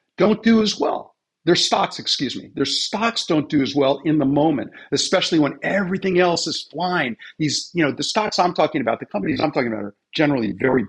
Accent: American